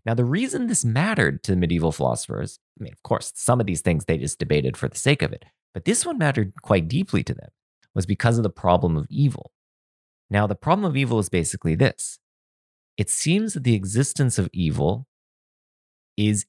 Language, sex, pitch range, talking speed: English, male, 90-125 Hz, 200 wpm